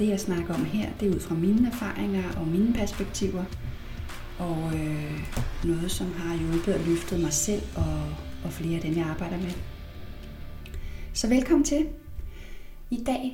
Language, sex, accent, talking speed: Danish, female, native, 160 wpm